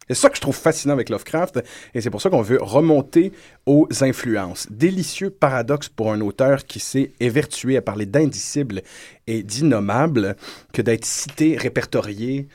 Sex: male